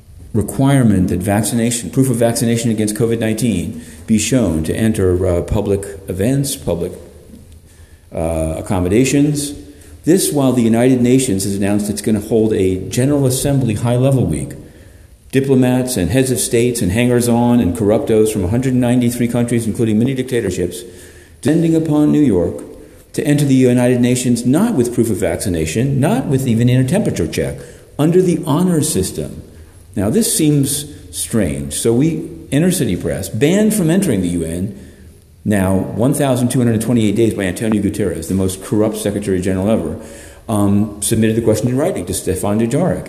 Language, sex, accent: English, male, American